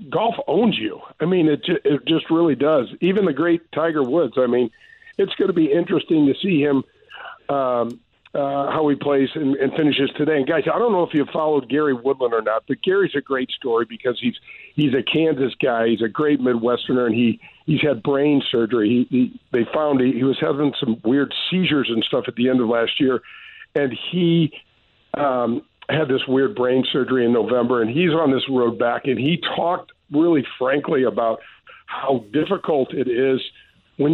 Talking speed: 200 wpm